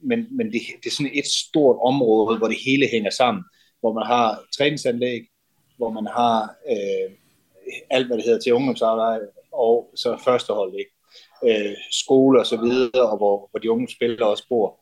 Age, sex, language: 30-49, male, Danish